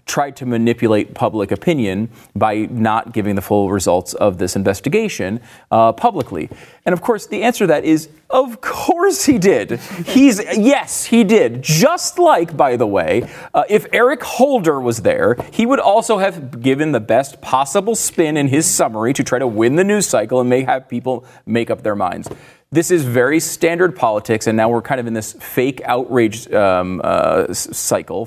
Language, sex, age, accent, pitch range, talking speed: English, male, 30-49, American, 115-190 Hz, 185 wpm